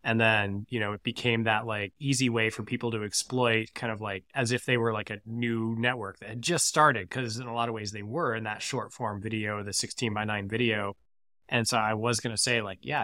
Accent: American